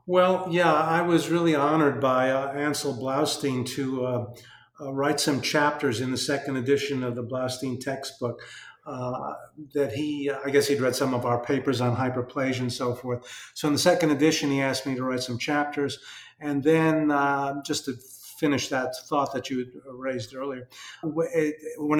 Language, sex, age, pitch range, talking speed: English, male, 50-69, 130-160 Hz, 180 wpm